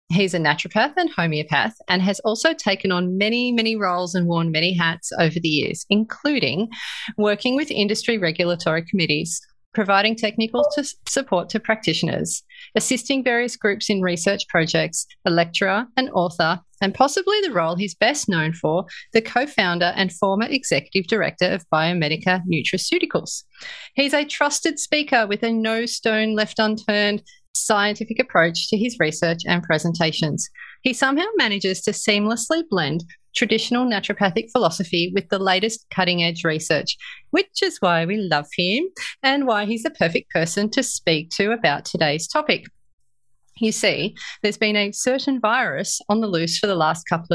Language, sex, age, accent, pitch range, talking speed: English, female, 30-49, Australian, 170-235 Hz, 155 wpm